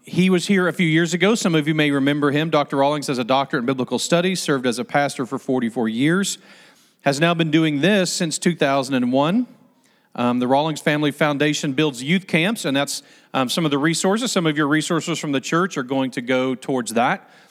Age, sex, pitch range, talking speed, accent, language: 40-59, male, 135-180 Hz, 215 wpm, American, English